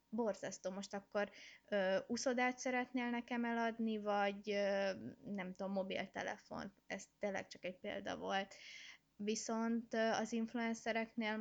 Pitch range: 200-220 Hz